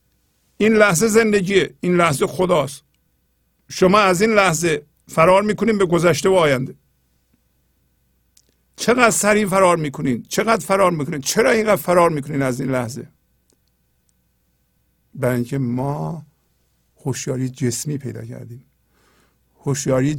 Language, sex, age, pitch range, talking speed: Persian, male, 50-69, 130-185 Hz, 115 wpm